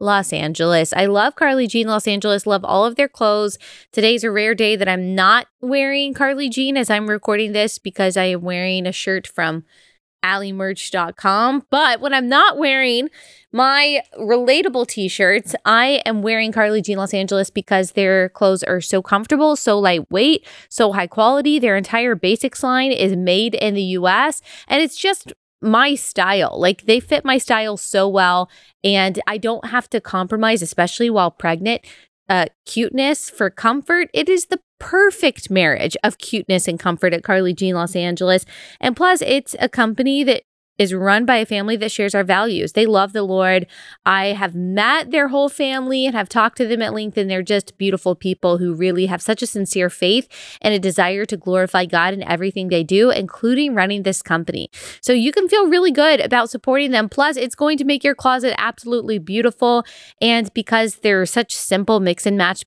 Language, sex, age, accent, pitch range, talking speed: English, female, 20-39, American, 185-255 Hz, 185 wpm